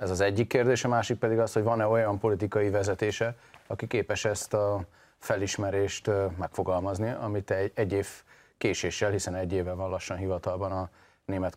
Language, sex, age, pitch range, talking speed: Hungarian, male, 30-49, 95-110 Hz, 160 wpm